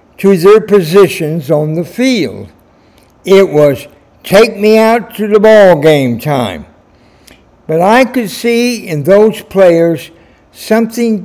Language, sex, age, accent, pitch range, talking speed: English, male, 60-79, American, 150-210 Hz, 130 wpm